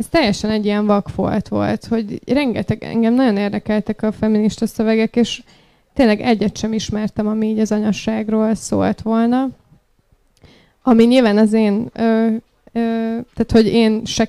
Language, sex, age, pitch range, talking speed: Hungarian, female, 20-39, 210-225 Hz, 140 wpm